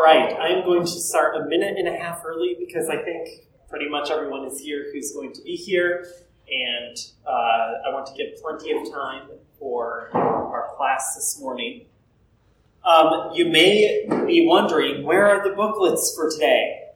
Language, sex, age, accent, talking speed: English, male, 30-49, American, 175 wpm